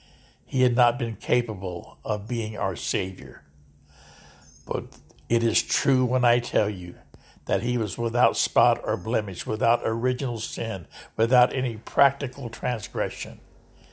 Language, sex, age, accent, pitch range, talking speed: English, male, 60-79, American, 110-130 Hz, 135 wpm